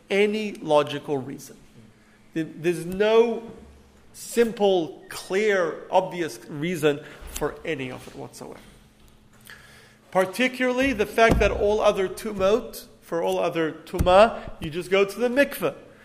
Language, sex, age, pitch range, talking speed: English, male, 40-59, 145-205 Hz, 115 wpm